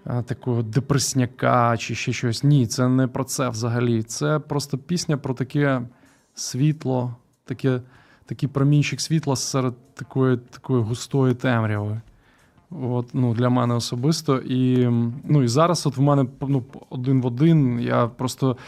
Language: Ukrainian